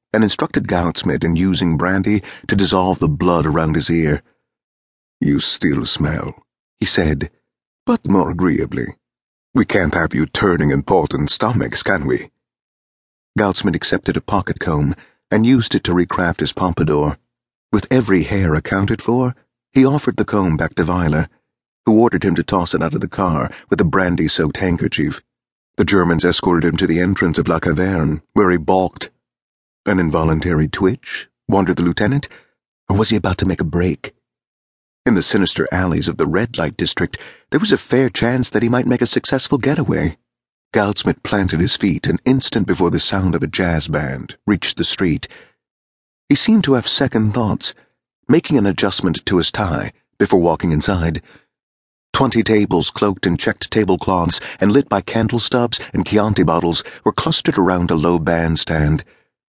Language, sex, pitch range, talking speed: English, male, 80-110 Hz, 165 wpm